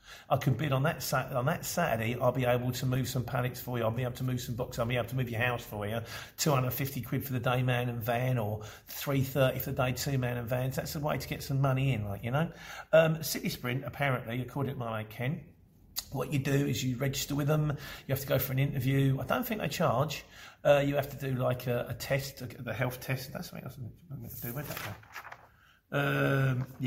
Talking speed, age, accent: 255 wpm, 40-59, British